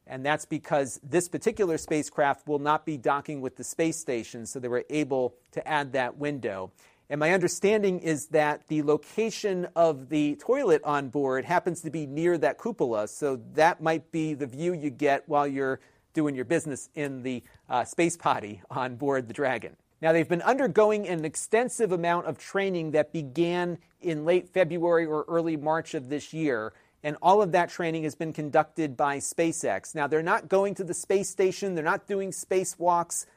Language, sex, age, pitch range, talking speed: English, male, 40-59, 145-170 Hz, 185 wpm